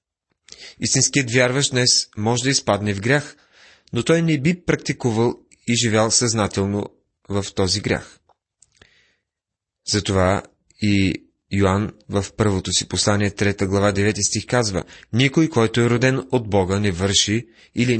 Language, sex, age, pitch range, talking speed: Bulgarian, male, 30-49, 95-125 Hz, 135 wpm